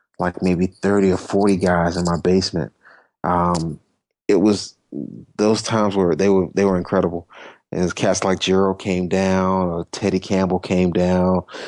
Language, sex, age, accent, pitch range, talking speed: English, male, 30-49, American, 90-100 Hz, 160 wpm